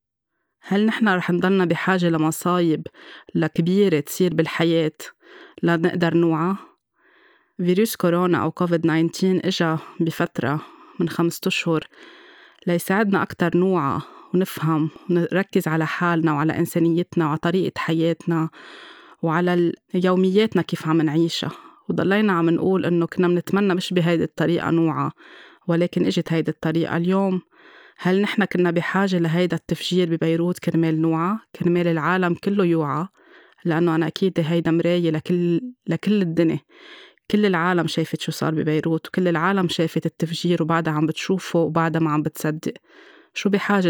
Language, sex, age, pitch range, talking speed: Arabic, female, 20-39, 165-190 Hz, 125 wpm